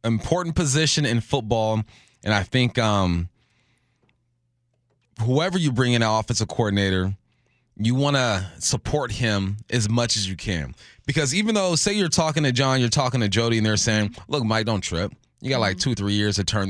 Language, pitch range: English, 105-130 Hz